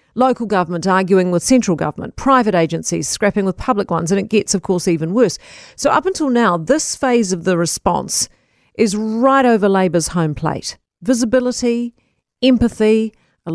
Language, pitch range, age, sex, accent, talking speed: English, 185-235 Hz, 40-59, female, Australian, 165 wpm